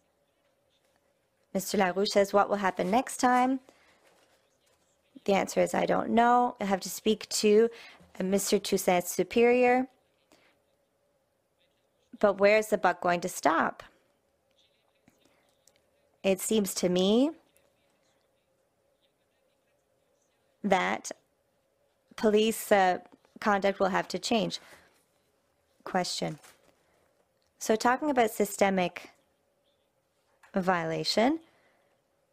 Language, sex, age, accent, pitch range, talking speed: English, female, 30-49, American, 185-220 Hz, 90 wpm